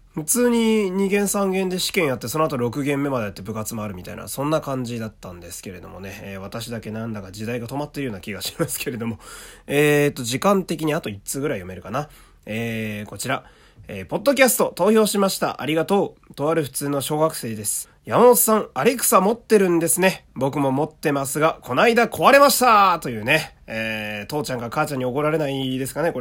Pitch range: 110-175 Hz